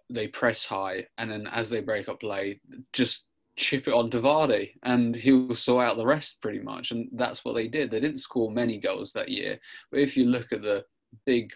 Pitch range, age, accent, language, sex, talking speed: 110-140 Hz, 20-39, British, English, male, 230 wpm